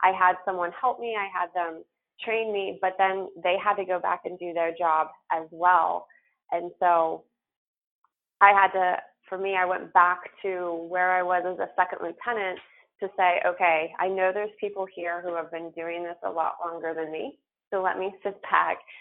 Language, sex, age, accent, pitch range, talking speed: English, female, 20-39, American, 165-190 Hz, 200 wpm